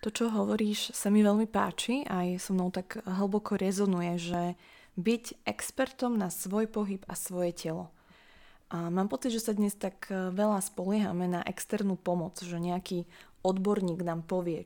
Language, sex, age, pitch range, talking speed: Slovak, female, 20-39, 170-200 Hz, 160 wpm